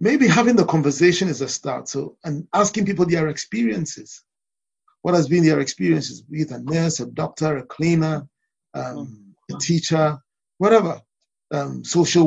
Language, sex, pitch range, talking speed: English, male, 160-205 Hz, 150 wpm